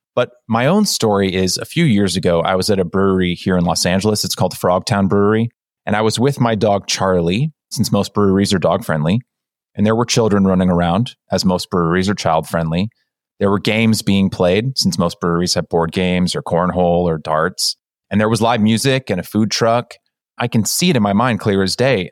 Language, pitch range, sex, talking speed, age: English, 95-120 Hz, male, 220 wpm, 30-49